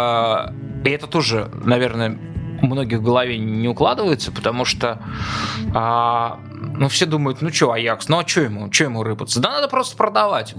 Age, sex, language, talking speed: 20-39, male, Russian, 170 wpm